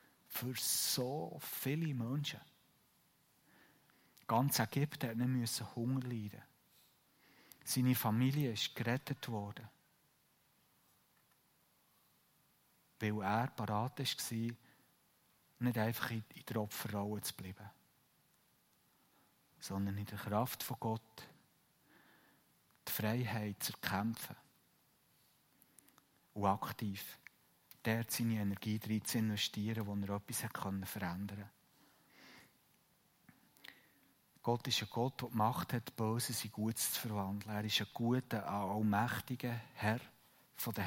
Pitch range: 105-120 Hz